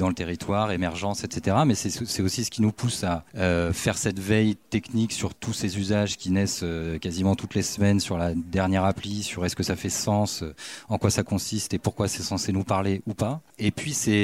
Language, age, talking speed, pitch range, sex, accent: French, 30-49, 235 wpm, 90-110 Hz, male, French